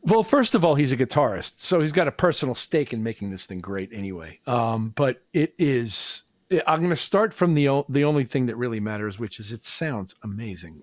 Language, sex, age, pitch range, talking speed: English, male, 50-69, 105-145 Hz, 225 wpm